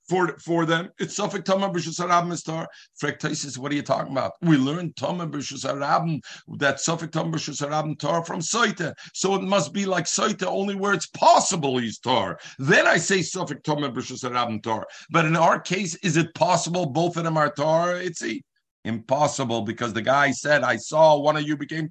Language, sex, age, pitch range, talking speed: English, male, 50-69, 120-170 Hz, 185 wpm